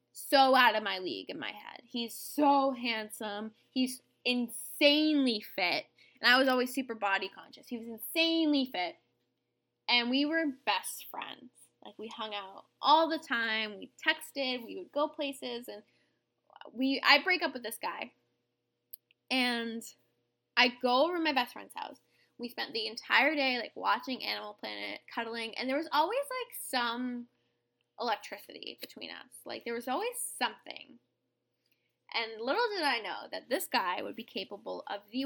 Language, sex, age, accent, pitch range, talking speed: English, female, 10-29, American, 215-285 Hz, 165 wpm